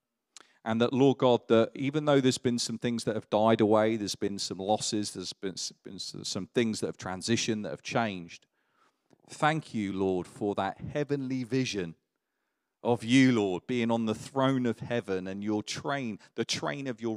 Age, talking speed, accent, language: 40-59, 180 wpm, British, English